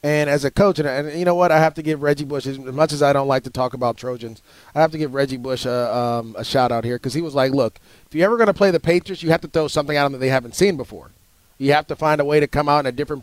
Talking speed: 325 wpm